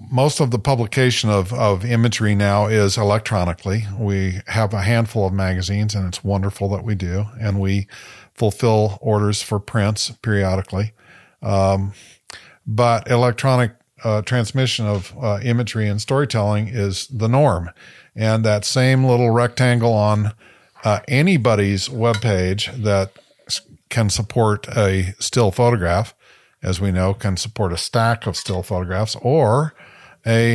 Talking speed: 135 wpm